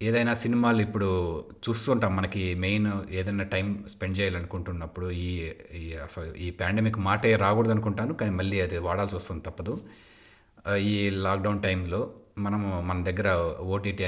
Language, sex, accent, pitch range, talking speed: Telugu, male, native, 90-105 Hz, 135 wpm